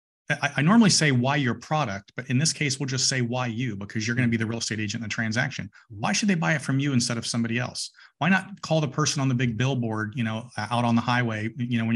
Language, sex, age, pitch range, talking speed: English, male, 40-59, 115-145 Hz, 280 wpm